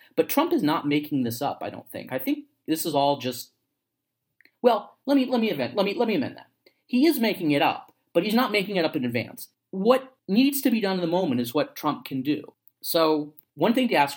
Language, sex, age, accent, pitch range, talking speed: English, male, 40-59, American, 130-170 Hz, 255 wpm